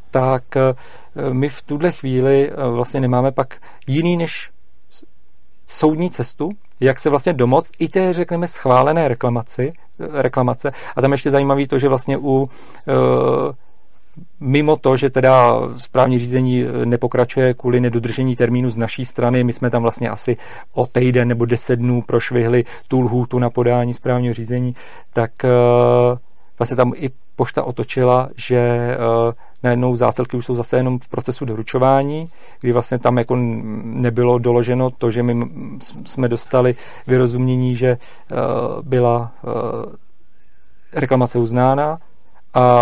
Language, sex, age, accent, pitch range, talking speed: Czech, male, 40-59, native, 120-130 Hz, 130 wpm